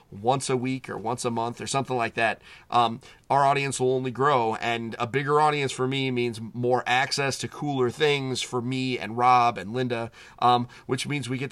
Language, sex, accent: English, male, American